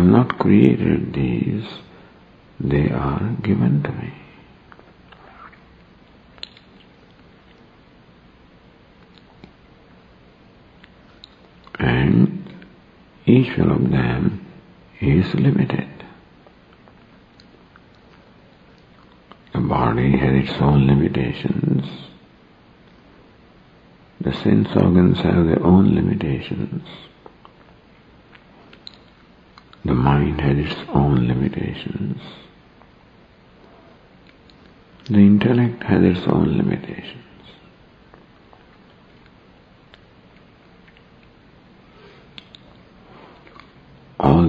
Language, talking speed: English, 60 wpm